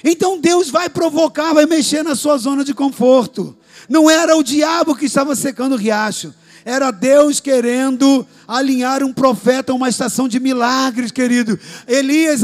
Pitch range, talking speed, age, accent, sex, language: 260-305 Hz, 160 wpm, 50-69, Brazilian, male, Portuguese